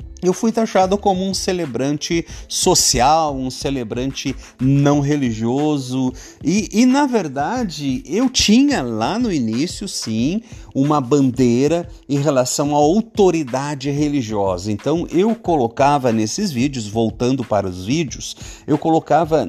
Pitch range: 125-185 Hz